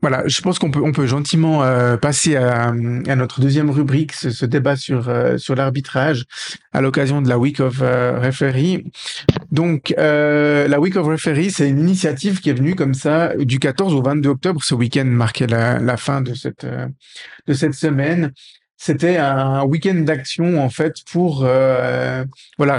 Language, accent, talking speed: French, French, 185 wpm